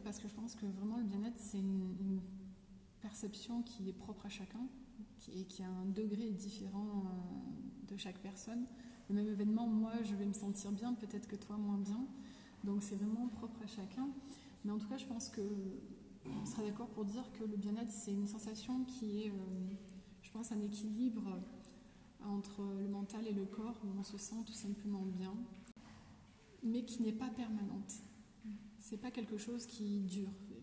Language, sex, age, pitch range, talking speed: French, female, 20-39, 200-220 Hz, 180 wpm